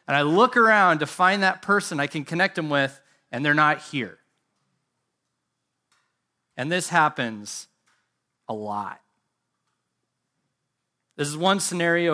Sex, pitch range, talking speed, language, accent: male, 140-185 Hz, 130 wpm, English, American